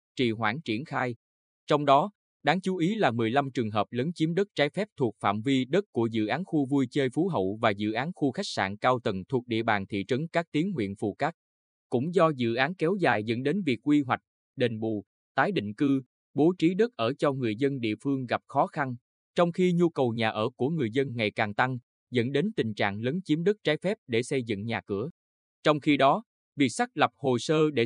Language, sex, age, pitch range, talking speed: Vietnamese, male, 20-39, 115-155 Hz, 240 wpm